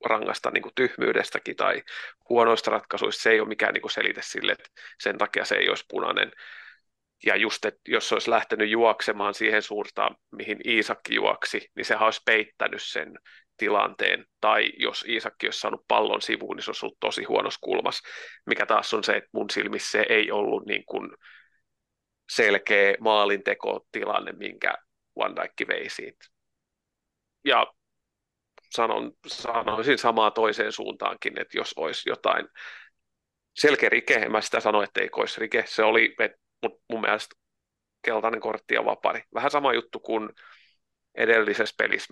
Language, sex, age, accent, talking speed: Finnish, male, 30-49, native, 150 wpm